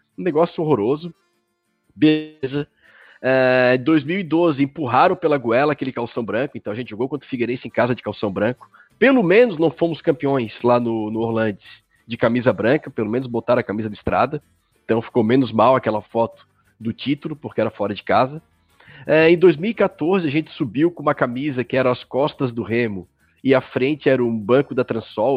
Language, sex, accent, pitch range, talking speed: Portuguese, male, Brazilian, 115-165 Hz, 185 wpm